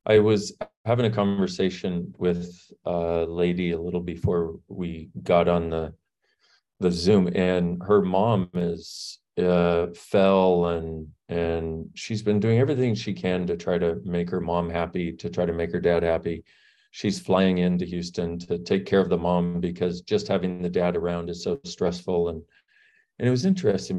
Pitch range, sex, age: 90-130 Hz, male, 40-59